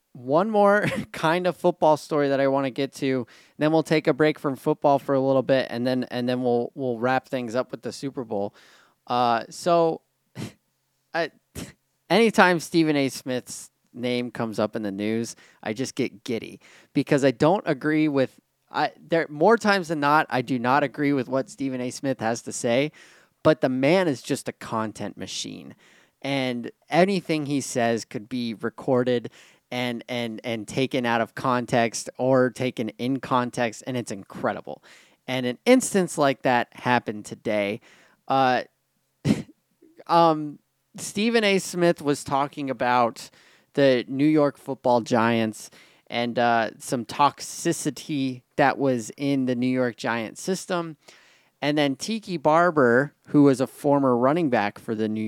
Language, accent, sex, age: English, American, male, 20-39